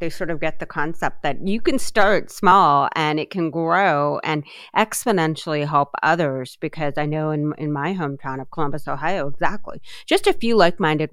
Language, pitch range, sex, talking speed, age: English, 150-210 Hz, female, 185 wpm, 30-49